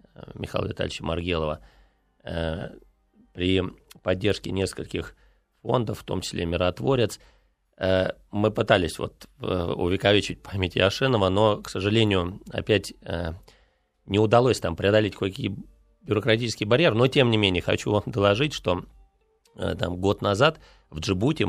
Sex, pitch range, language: male, 90-115 Hz, Russian